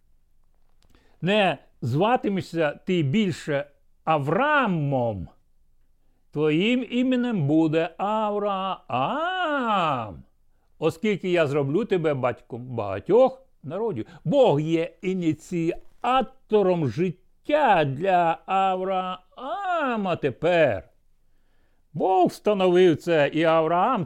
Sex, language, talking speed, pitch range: male, Ukrainian, 70 wpm, 140-190 Hz